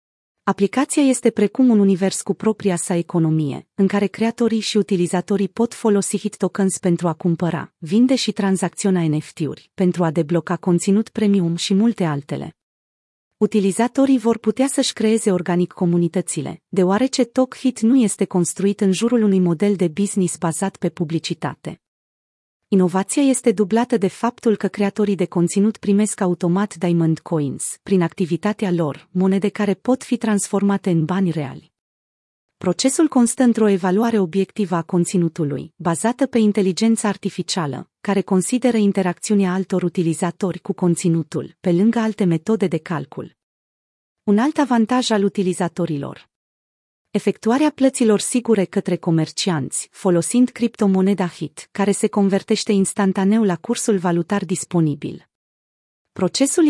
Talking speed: 130 wpm